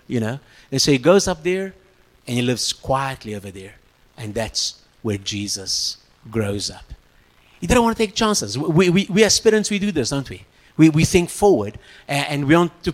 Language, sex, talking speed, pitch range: English, male, 205 wpm, 125-190 Hz